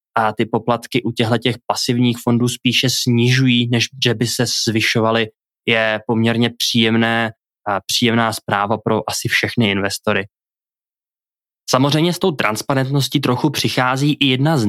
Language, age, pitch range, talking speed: Czech, 20-39, 110-125 Hz, 140 wpm